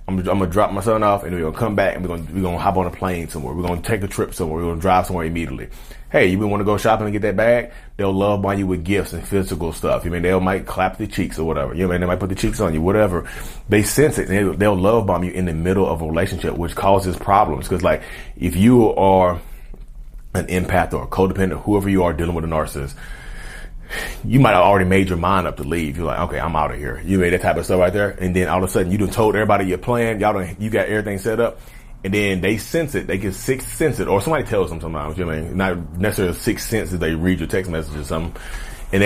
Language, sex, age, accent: English, male, 30-49, American